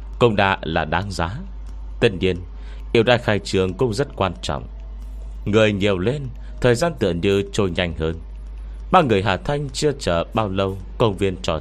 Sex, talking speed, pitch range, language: male, 185 wpm, 65-105 Hz, Vietnamese